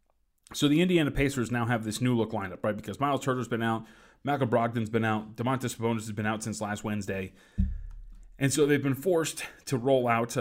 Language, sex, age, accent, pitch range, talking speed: English, male, 30-49, American, 105-125 Hz, 210 wpm